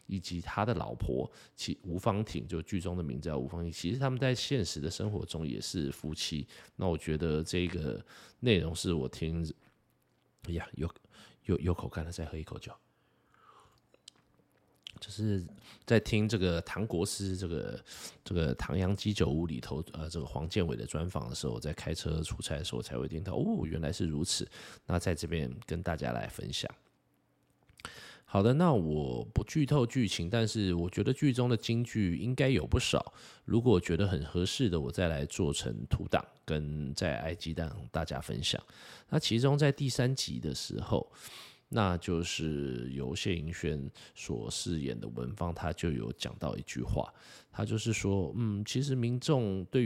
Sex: male